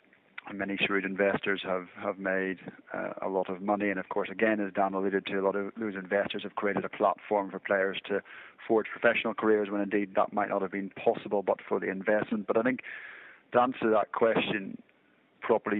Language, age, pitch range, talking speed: English, 30-49, 95-105 Hz, 210 wpm